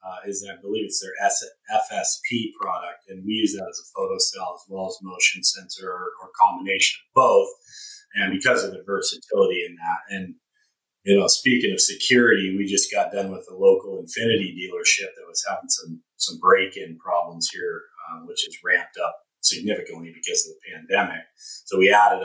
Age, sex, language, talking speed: 30-49, male, English, 190 wpm